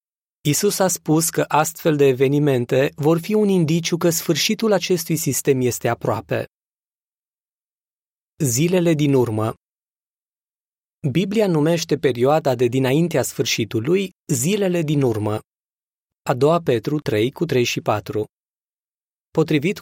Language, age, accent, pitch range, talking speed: Romanian, 20-39, native, 125-160 Hz, 115 wpm